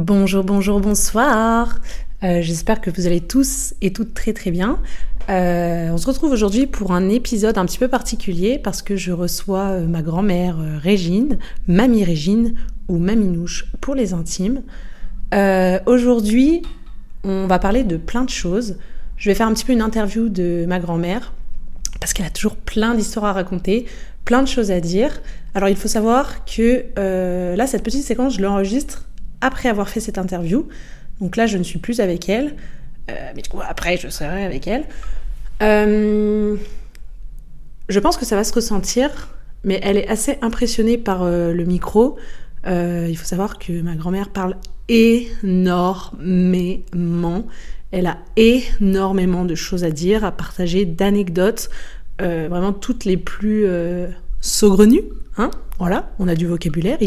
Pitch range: 180-230 Hz